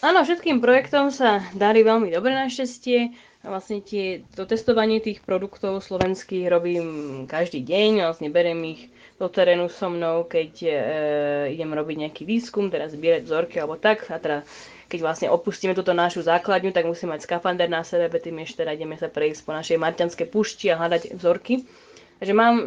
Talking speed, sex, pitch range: 165 wpm, female, 170-210 Hz